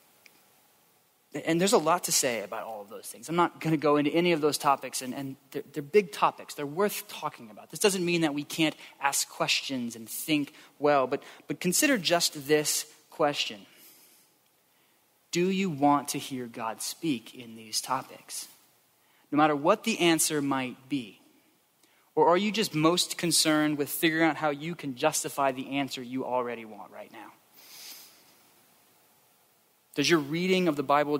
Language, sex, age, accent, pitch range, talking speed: English, male, 20-39, American, 140-160 Hz, 175 wpm